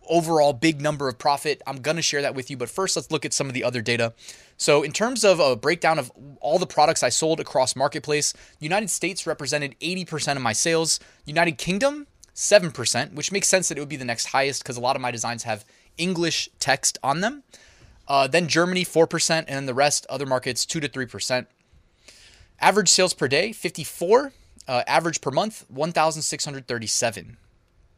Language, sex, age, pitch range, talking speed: English, male, 20-39, 120-165 Hz, 195 wpm